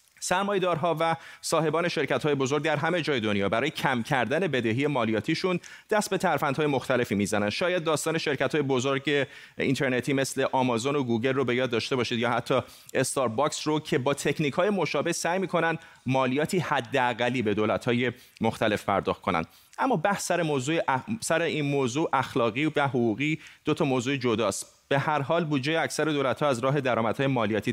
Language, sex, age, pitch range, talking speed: Persian, male, 30-49, 120-155 Hz, 160 wpm